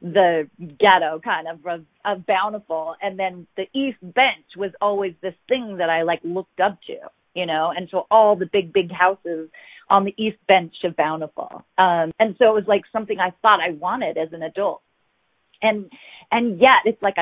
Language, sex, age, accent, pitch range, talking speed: English, female, 30-49, American, 180-250 Hz, 195 wpm